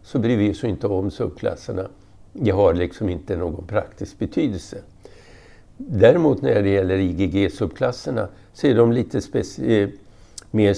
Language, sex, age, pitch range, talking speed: Swedish, male, 60-79, 95-105 Hz, 140 wpm